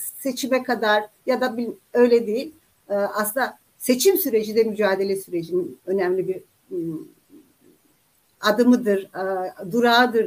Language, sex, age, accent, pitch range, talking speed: Turkish, female, 60-79, native, 200-290 Hz, 95 wpm